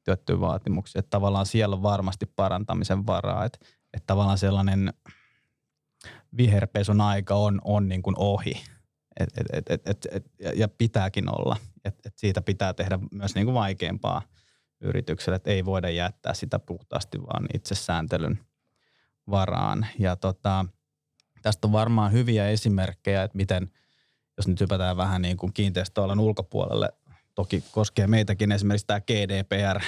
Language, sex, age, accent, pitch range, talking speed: Finnish, male, 20-39, native, 95-105 Hz, 135 wpm